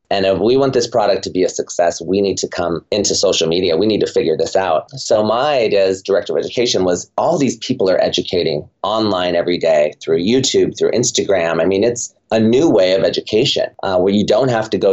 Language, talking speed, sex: English, 235 wpm, male